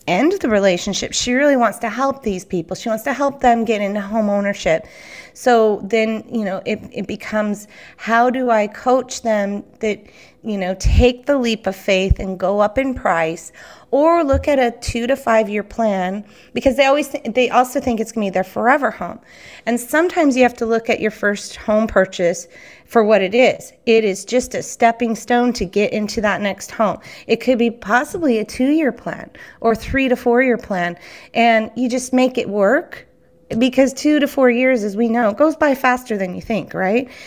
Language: English